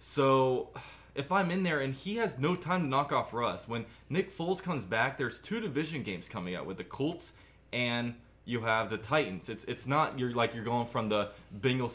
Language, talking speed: English, 215 wpm